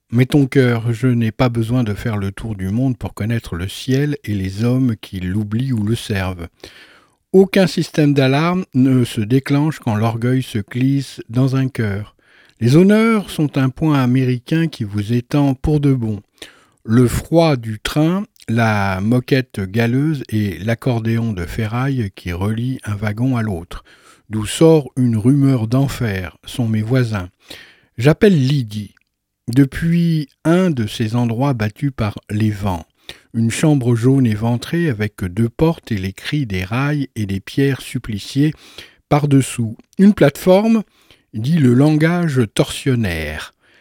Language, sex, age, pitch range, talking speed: French, male, 60-79, 110-145 Hz, 150 wpm